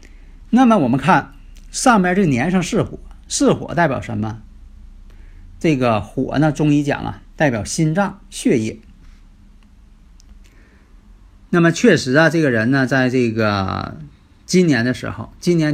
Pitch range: 115-185 Hz